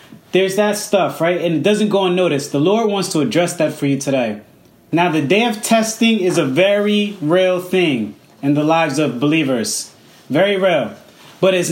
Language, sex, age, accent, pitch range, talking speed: English, male, 30-49, American, 170-210 Hz, 190 wpm